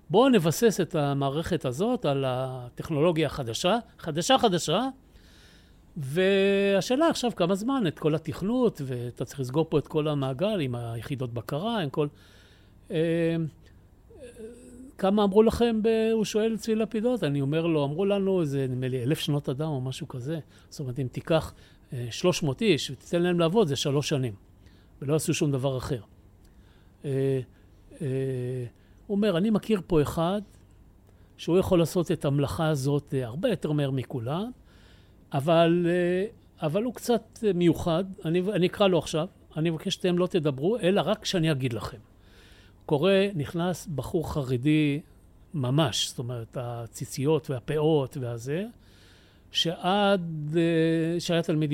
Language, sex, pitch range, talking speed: Hebrew, male, 130-180 Hz, 135 wpm